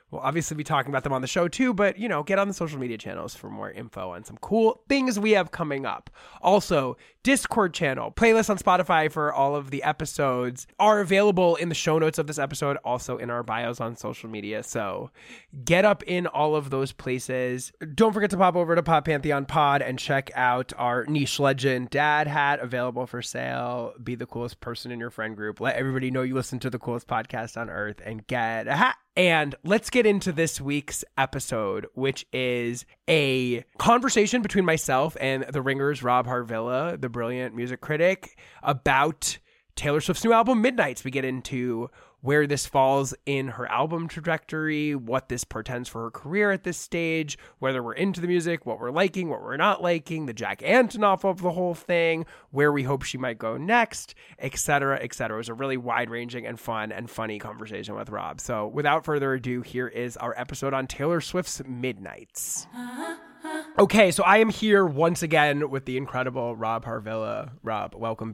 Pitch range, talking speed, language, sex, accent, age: 125-170 Hz, 195 wpm, English, male, American, 20-39